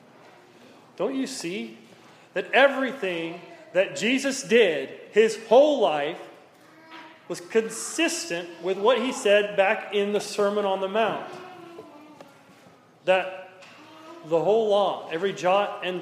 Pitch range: 185-285 Hz